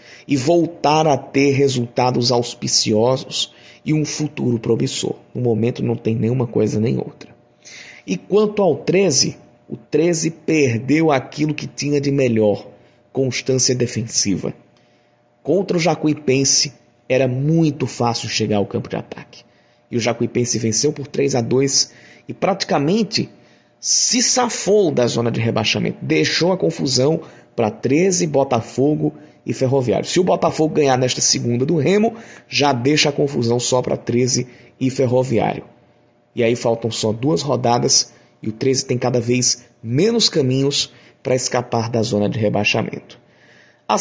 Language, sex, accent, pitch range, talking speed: Portuguese, male, Brazilian, 120-150 Hz, 145 wpm